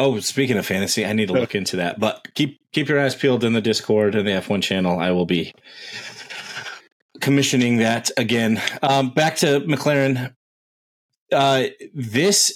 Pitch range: 105-130 Hz